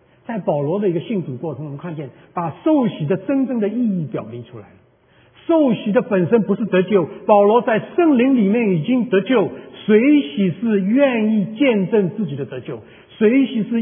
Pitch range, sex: 155-235 Hz, male